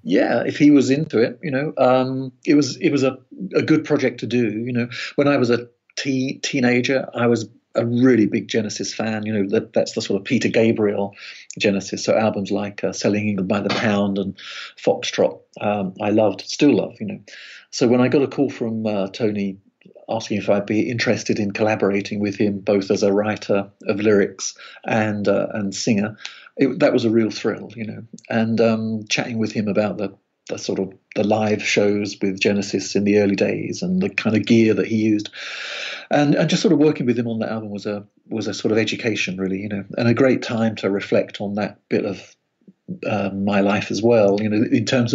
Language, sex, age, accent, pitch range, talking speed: English, male, 50-69, British, 100-130 Hz, 220 wpm